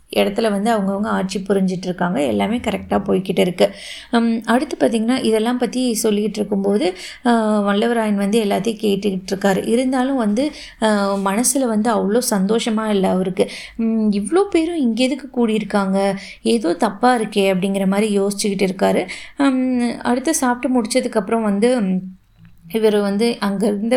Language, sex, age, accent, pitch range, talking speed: Tamil, female, 20-39, native, 200-230 Hz, 115 wpm